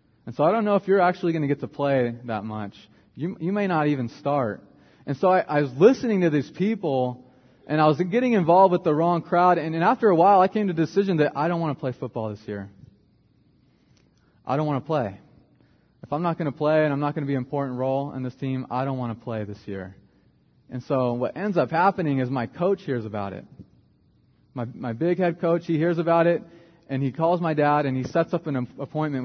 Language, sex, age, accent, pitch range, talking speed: English, male, 30-49, American, 125-165 Hz, 245 wpm